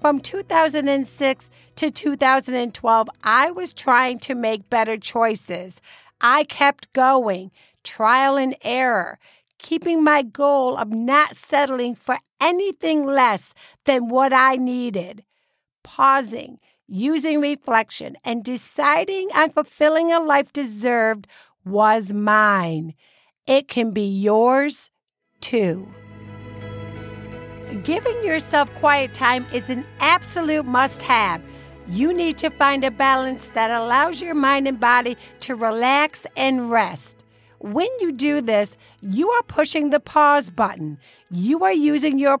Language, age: English, 50-69